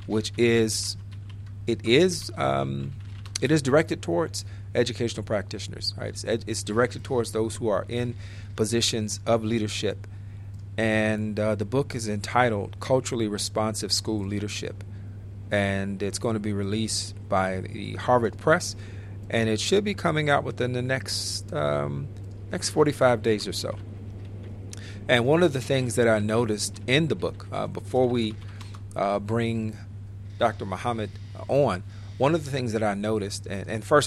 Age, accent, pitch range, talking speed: 40-59, American, 100-115 Hz, 150 wpm